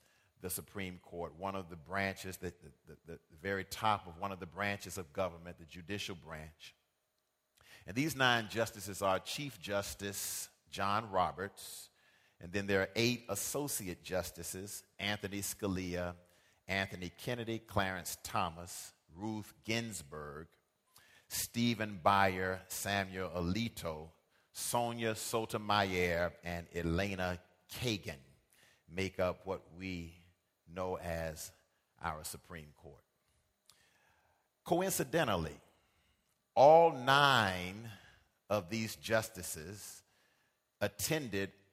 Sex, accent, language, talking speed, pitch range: male, American, English, 105 wpm, 90-105 Hz